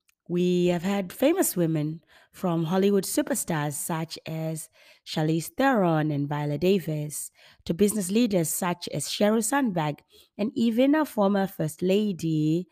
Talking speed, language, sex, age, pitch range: 130 wpm, English, female, 20-39, 150-185 Hz